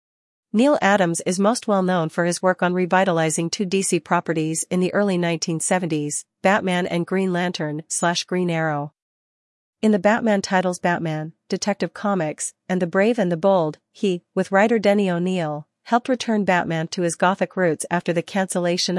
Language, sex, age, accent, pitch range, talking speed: English, female, 40-59, American, 170-195 Hz, 165 wpm